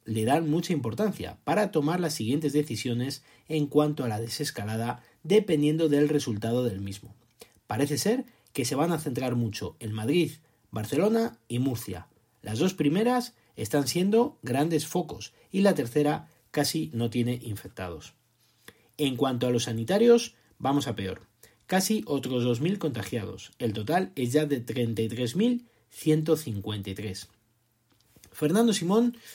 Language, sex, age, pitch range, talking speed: Spanish, male, 40-59, 115-165 Hz, 135 wpm